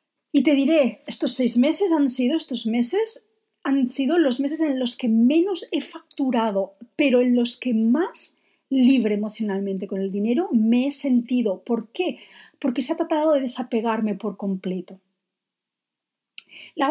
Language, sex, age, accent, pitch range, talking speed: Spanish, female, 40-59, Spanish, 215-295 Hz, 155 wpm